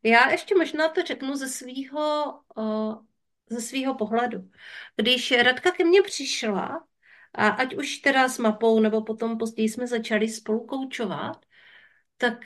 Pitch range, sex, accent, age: 210-255 Hz, female, native, 40-59